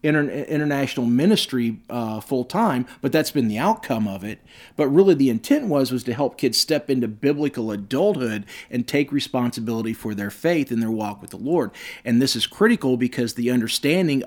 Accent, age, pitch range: American, 40-59, 125-170 Hz